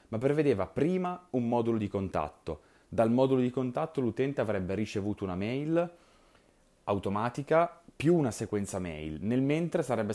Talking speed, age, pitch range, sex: 140 wpm, 30-49, 95-130 Hz, male